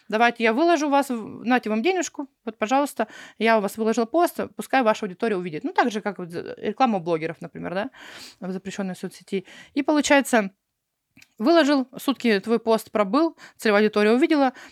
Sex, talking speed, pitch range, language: female, 165 wpm, 195-260 Hz, Russian